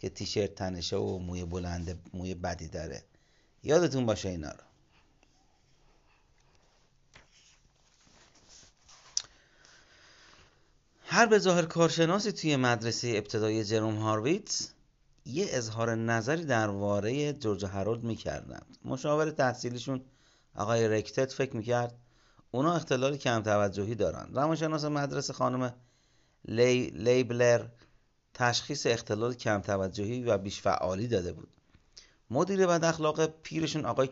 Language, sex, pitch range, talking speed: Persian, male, 110-150 Hz, 100 wpm